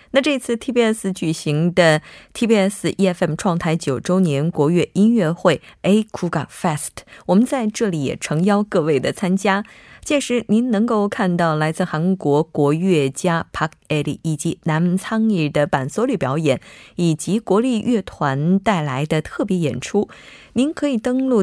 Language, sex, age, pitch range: Korean, female, 20-39, 155-205 Hz